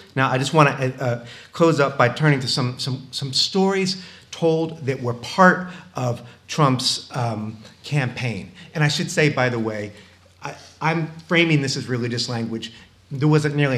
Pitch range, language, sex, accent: 110-150 Hz, English, male, American